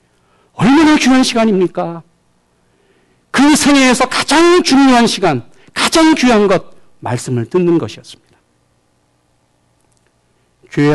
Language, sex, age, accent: Korean, male, 50-69, native